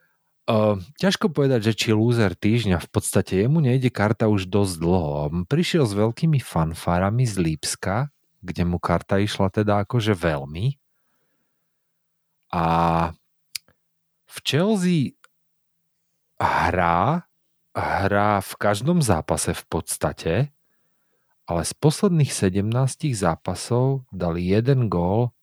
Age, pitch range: 40-59, 90-125 Hz